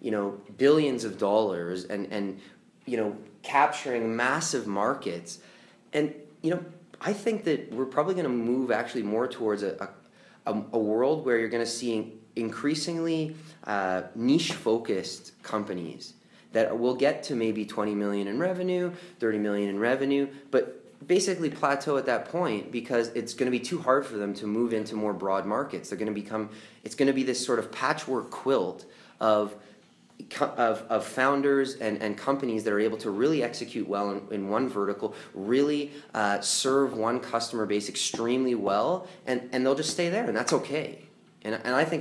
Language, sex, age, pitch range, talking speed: English, male, 30-49, 105-140 Hz, 170 wpm